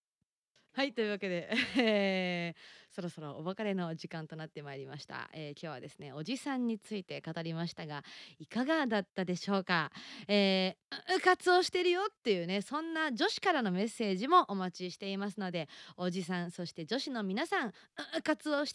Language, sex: Japanese, female